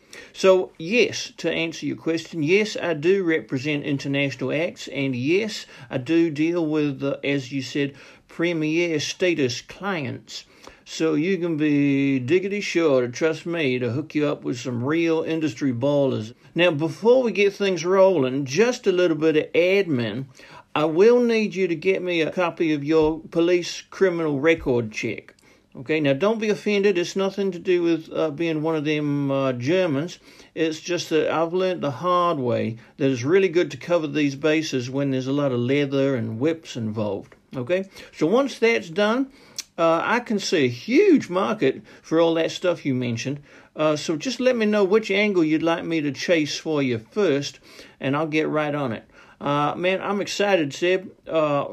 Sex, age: male, 60-79